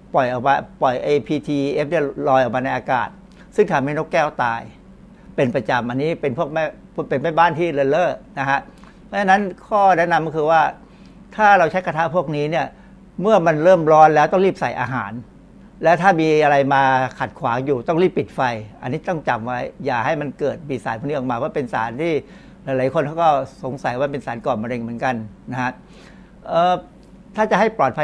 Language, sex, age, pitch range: Thai, male, 60-79, 135-185 Hz